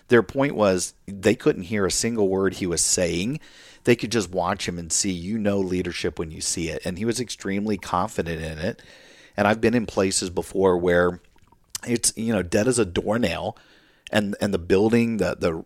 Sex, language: male, English